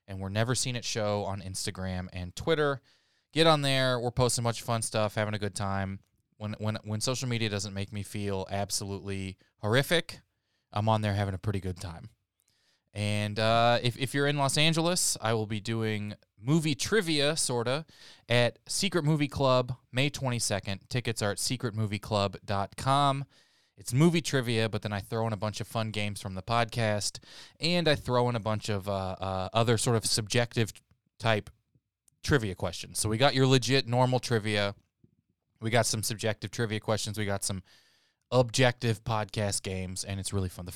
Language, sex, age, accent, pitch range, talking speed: English, male, 20-39, American, 100-125 Hz, 180 wpm